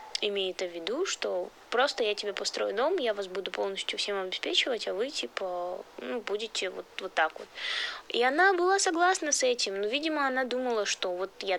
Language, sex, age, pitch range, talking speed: Russian, female, 20-39, 185-275 Hz, 190 wpm